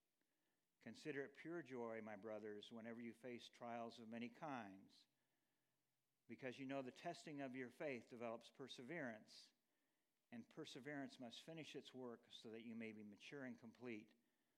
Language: English